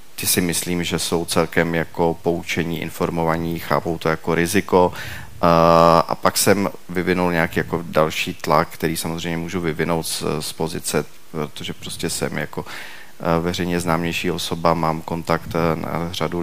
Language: Czech